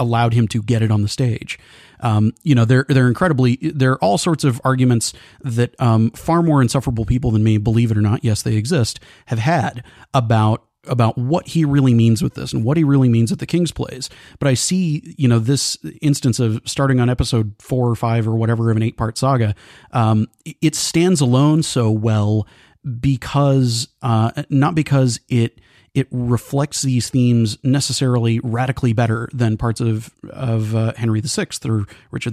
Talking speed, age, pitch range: 190 wpm, 30-49, 115-135 Hz